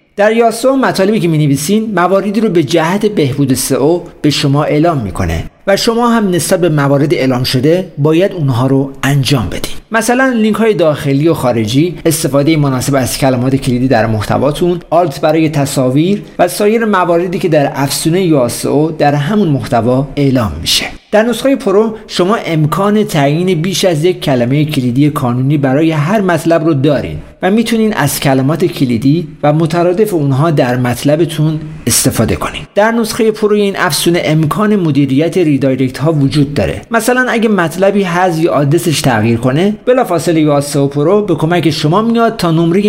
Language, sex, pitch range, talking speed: Persian, male, 140-185 Hz, 155 wpm